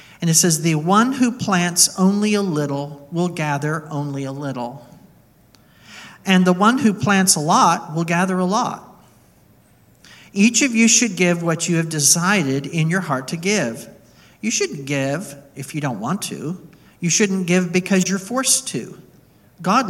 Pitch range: 155-195 Hz